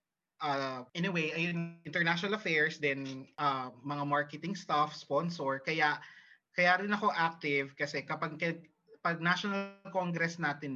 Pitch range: 140-180 Hz